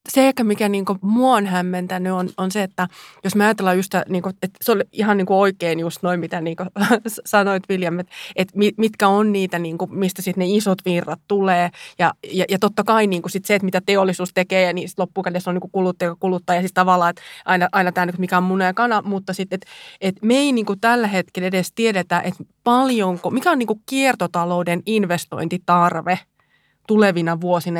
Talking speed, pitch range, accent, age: 215 wpm, 180-210 Hz, native, 20-39